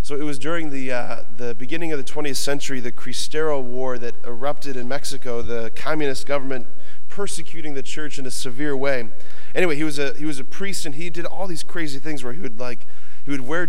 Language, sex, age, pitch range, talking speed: English, male, 30-49, 120-150 Hz, 225 wpm